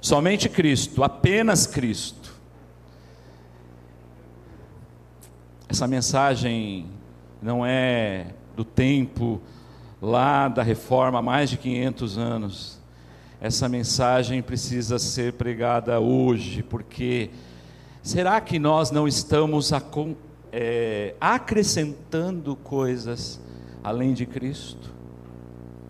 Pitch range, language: 110-145 Hz, Portuguese